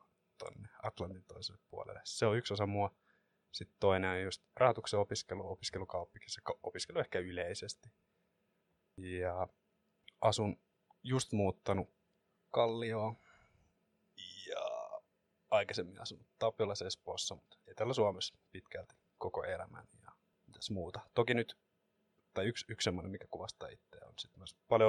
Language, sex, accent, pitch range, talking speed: Finnish, male, native, 100-115 Hz, 120 wpm